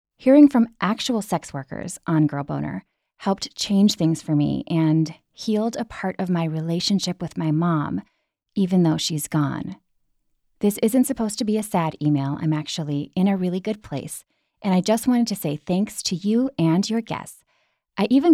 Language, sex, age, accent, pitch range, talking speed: English, female, 30-49, American, 155-210 Hz, 185 wpm